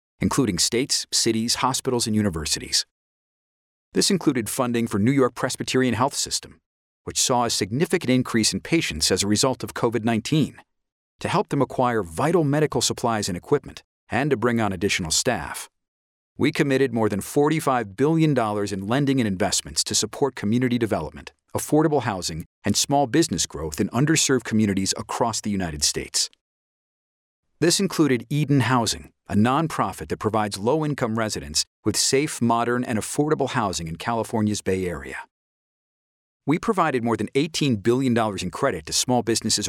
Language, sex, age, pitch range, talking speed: English, male, 40-59, 100-135 Hz, 150 wpm